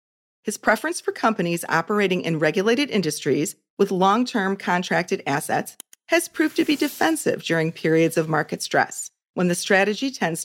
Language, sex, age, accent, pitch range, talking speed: English, female, 40-59, American, 165-235 Hz, 155 wpm